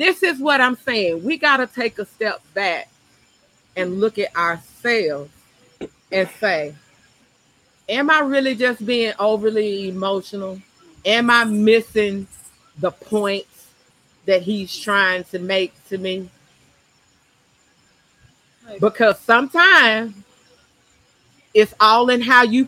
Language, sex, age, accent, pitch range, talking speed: English, female, 40-59, American, 175-240 Hz, 115 wpm